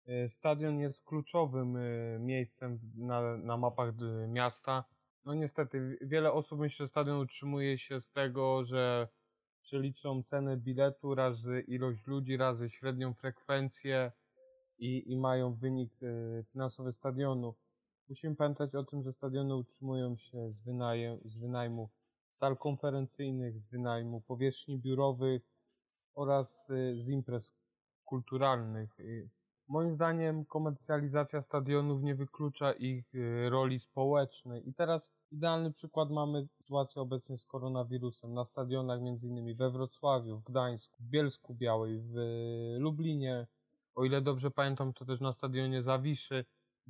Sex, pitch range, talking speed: male, 120-140 Hz, 125 wpm